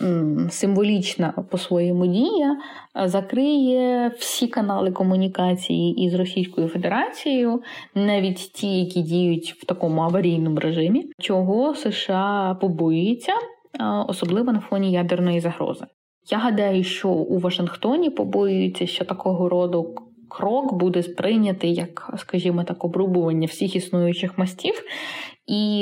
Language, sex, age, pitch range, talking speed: Ukrainian, female, 20-39, 170-210 Hz, 105 wpm